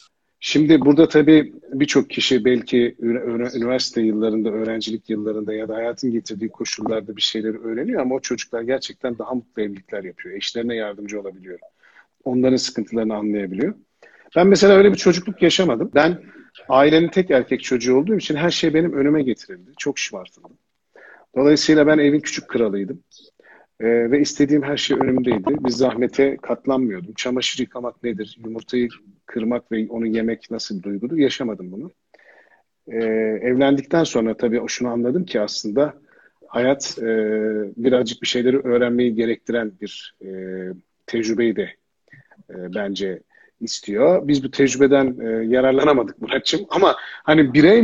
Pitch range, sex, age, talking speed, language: 115-145 Hz, male, 50-69, 140 wpm, Turkish